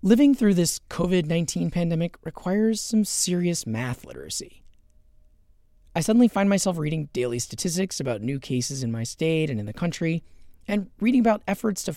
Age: 30-49